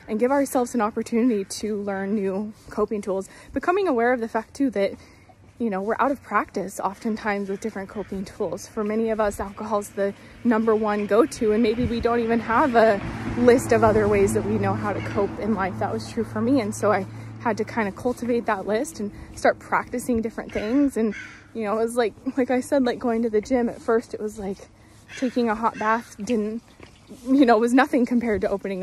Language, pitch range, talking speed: English, 200-235 Hz, 225 wpm